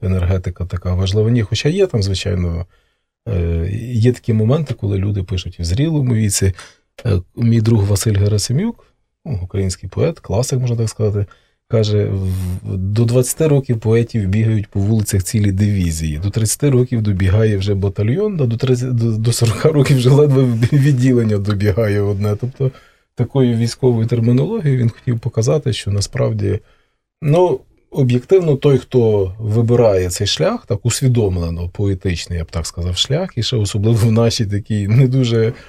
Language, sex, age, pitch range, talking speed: Russian, male, 20-39, 100-125 Hz, 145 wpm